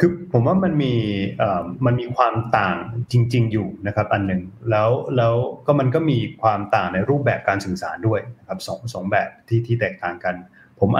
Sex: male